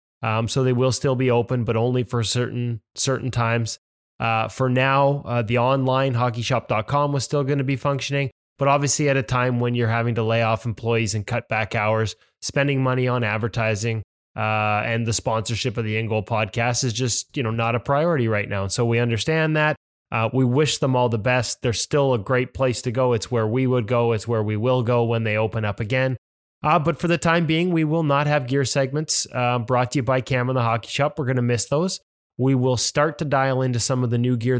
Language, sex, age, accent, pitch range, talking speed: English, male, 20-39, American, 115-140 Hz, 235 wpm